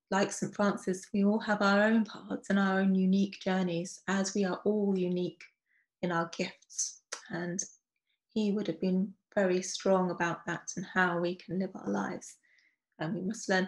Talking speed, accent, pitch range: 185 wpm, British, 185-210 Hz